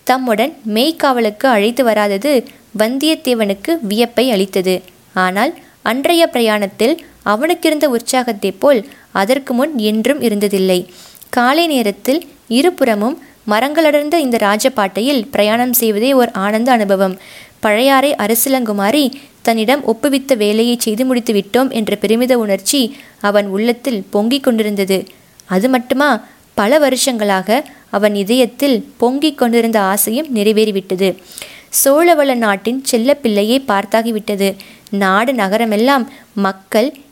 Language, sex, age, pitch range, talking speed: Tamil, female, 20-39, 210-265 Hz, 100 wpm